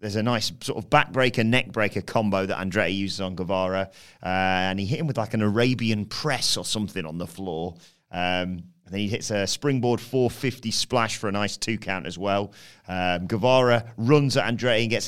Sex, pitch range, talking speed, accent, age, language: male, 100-130 Hz, 205 wpm, British, 30-49, English